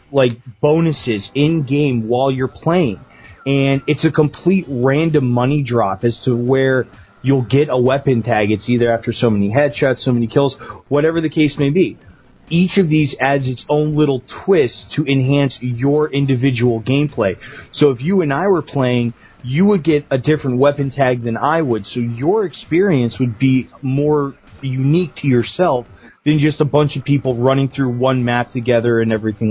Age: 30-49